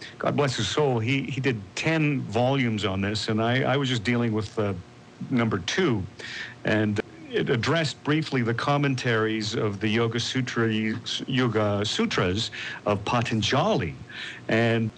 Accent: American